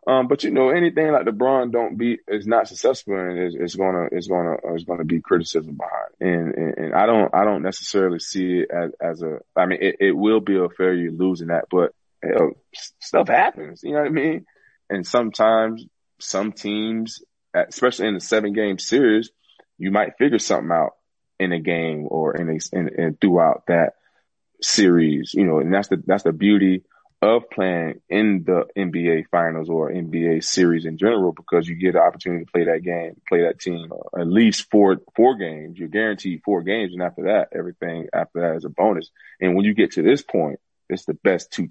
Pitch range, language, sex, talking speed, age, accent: 85-105 Hz, English, male, 205 wpm, 20-39, American